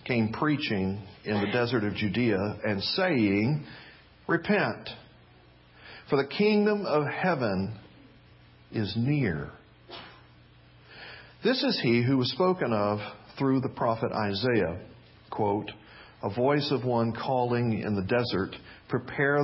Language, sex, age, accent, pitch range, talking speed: English, male, 50-69, American, 105-145 Hz, 115 wpm